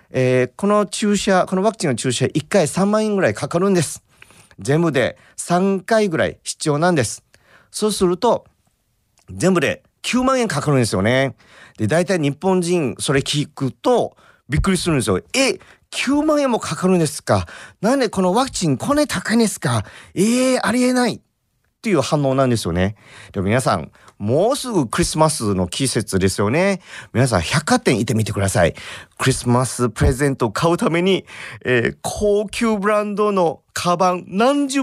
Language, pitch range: Japanese, 130-210 Hz